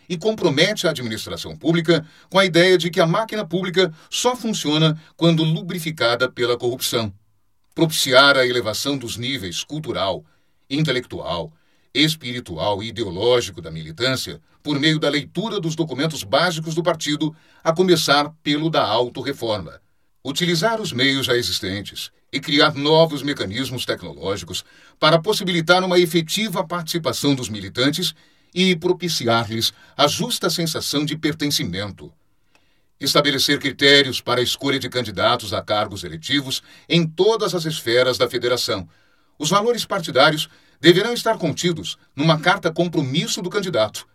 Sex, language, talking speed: male, Portuguese, 130 wpm